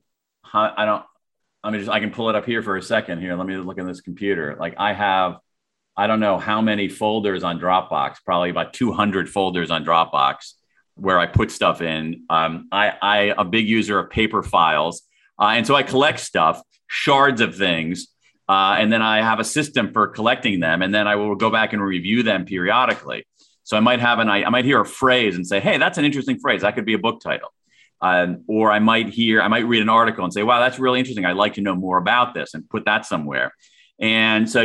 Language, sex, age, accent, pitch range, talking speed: English, male, 40-59, American, 100-120 Hz, 230 wpm